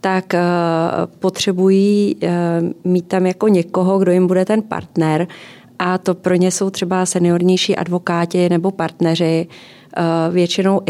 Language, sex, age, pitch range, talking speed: Czech, female, 30-49, 170-185 Hz, 140 wpm